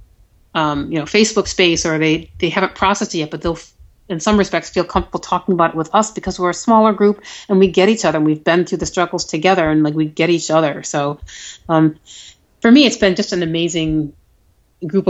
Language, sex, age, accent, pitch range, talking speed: English, female, 30-49, American, 150-190 Hz, 225 wpm